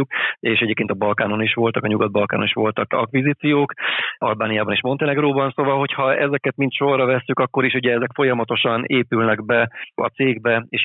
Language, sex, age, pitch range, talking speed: Hungarian, male, 30-49, 105-125 Hz, 170 wpm